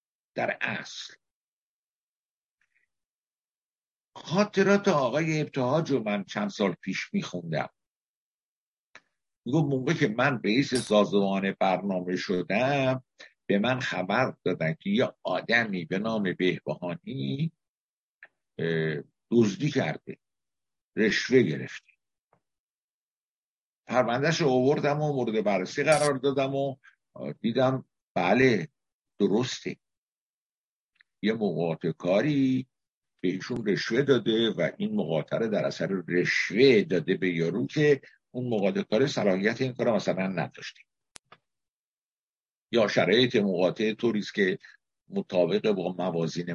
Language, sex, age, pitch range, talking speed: Persian, male, 60-79, 105-145 Hz, 95 wpm